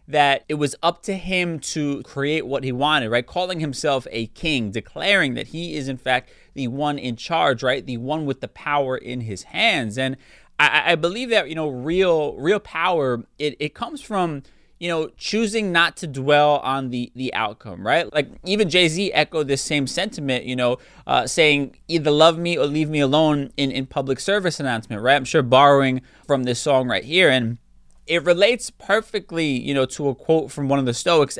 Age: 30-49